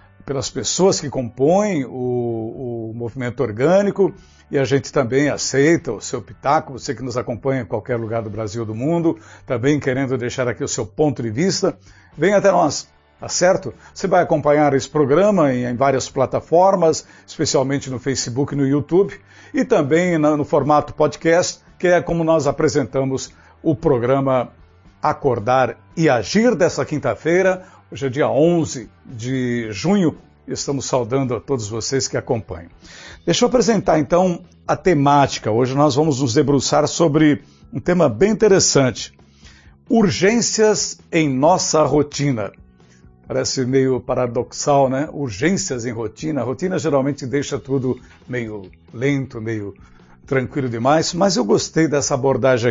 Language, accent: Portuguese, Brazilian